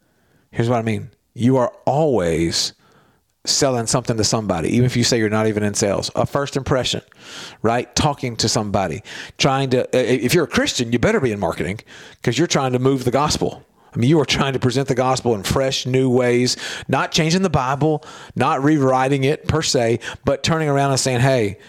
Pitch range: 110-135 Hz